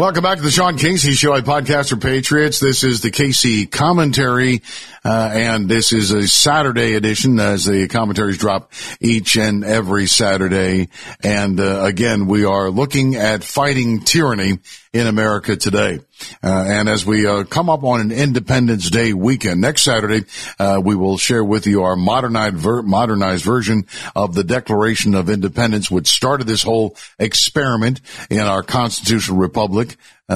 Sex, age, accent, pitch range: male, 50-69, American, 100-120 Hz